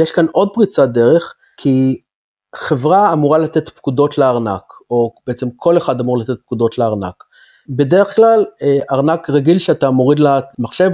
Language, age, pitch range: Hebrew, 30-49, 135-170 Hz